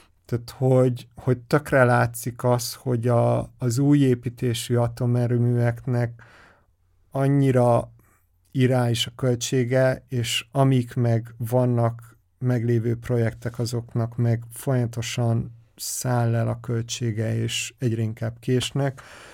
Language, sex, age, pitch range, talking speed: Hungarian, male, 50-69, 115-140 Hz, 105 wpm